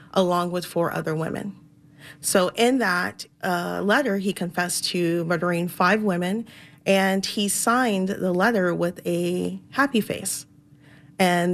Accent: American